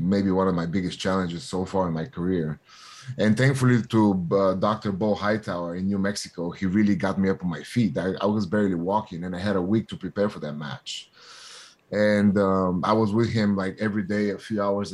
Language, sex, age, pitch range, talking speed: English, male, 30-49, 95-110 Hz, 225 wpm